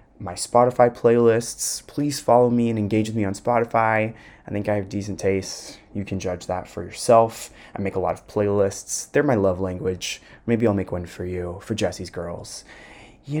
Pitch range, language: 95-115 Hz, English